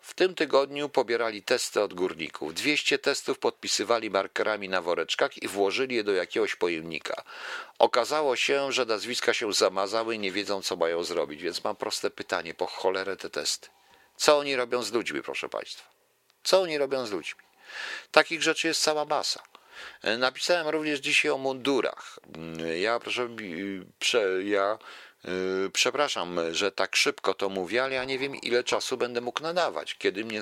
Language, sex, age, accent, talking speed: Polish, male, 50-69, native, 160 wpm